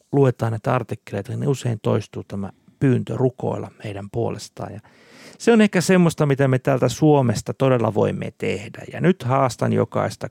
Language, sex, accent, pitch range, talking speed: Finnish, male, native, 110-140 Hz, 155 wpm